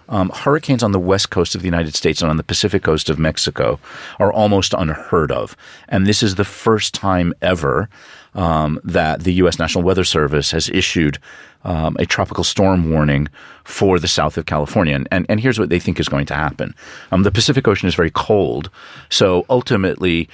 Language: English